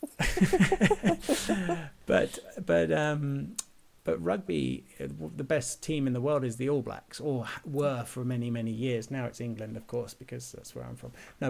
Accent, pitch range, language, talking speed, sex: British, 115-135 Hz, English, 165 wpm, male